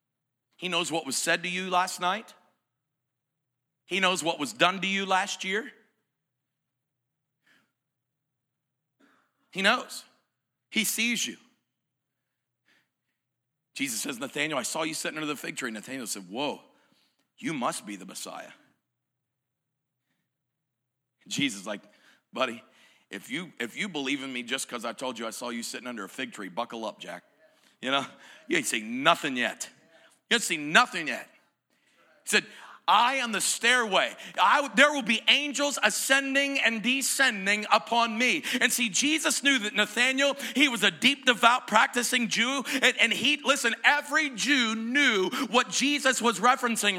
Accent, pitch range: American, 155-255 Hz